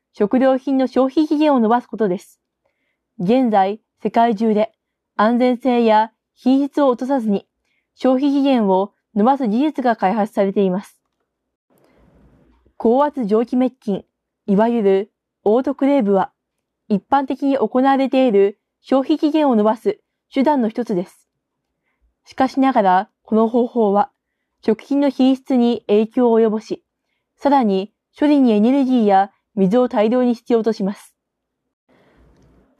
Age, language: 20-39, Japanese